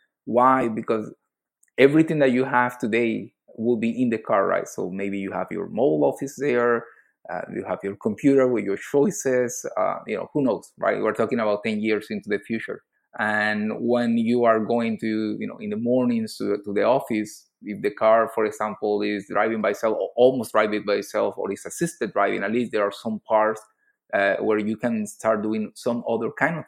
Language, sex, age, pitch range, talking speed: English, male, 30-49, 105-120 Hz, 205 wpm